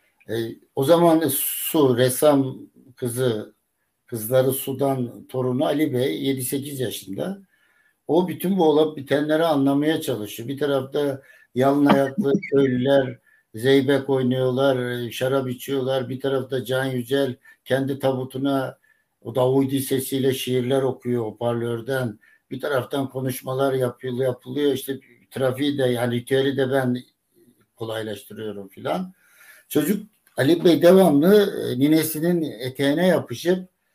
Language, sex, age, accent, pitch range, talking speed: Turkish, male, 60-79, native, 125-155 Hz, 110 wpm